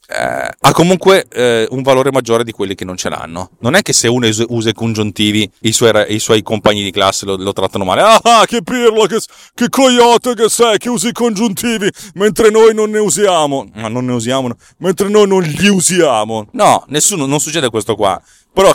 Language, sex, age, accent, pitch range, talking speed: Italian, male, 30-49, native, 110-155 Hz, 210 wpm